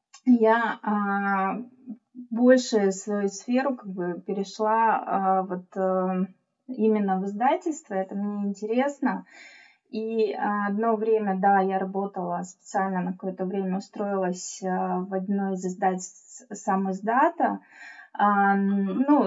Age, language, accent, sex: 20-39, Russian, native, female